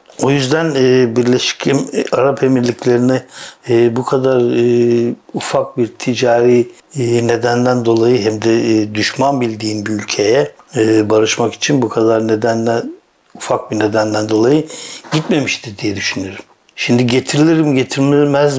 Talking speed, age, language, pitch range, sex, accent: 110 wpm, 60-79, Turkish, 115-135 Hz, male, native